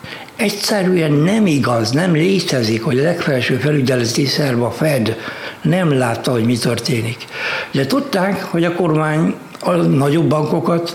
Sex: male